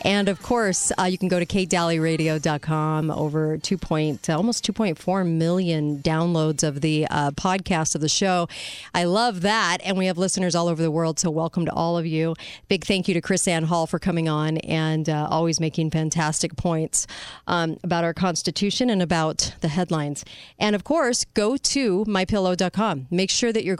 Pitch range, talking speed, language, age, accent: 160-195 Hz, 190 wpm, English, 40-59, American